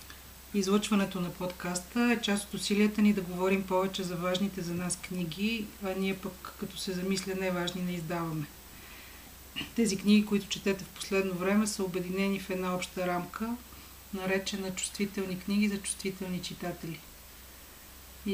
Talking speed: 150 wpm